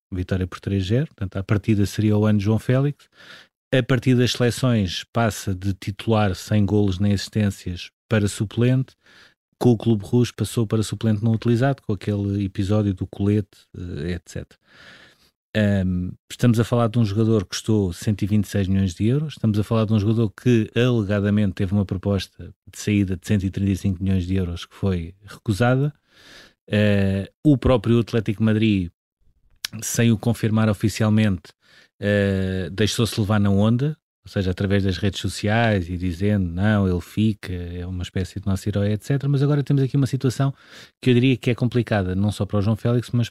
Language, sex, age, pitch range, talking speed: Portuguese, male, 20-39, 100-120 Hz, 170 wpm